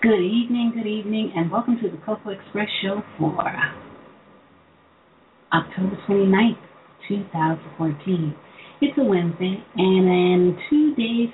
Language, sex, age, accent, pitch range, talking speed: English, female, 40-59, American, 165-195 Hz, 115 wpm